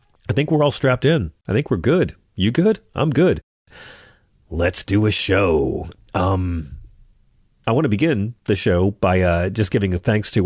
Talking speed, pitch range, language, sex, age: 185 wpm, 90-115 Hz, English, male, 40-59